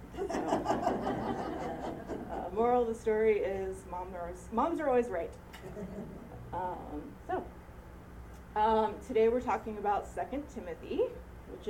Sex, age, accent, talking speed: female, 20-39, American, 125 wpm